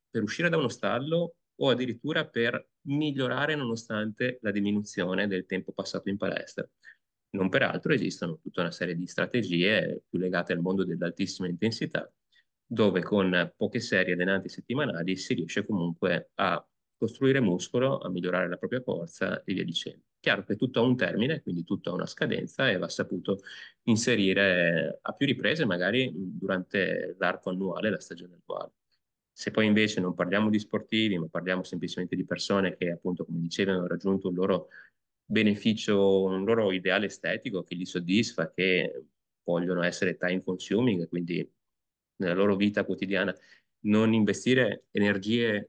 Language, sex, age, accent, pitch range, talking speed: Italian, male, 30-49, native, 90-110 Hz, 155 wpm